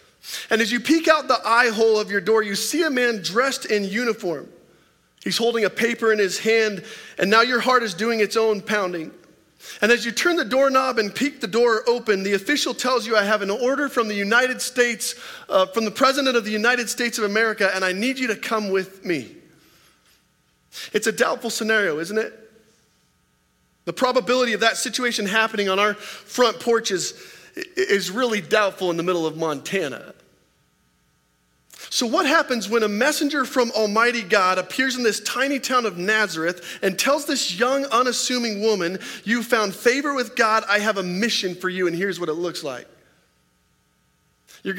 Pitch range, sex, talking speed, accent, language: 180-245 Hz, male, 185 wpm, American, English